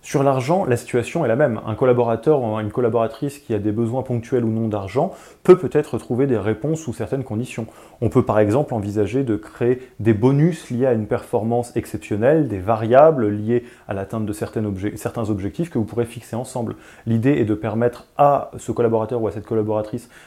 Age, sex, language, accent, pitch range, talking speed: 20-39, male, French, French, 110-130 Hz, 200 wpm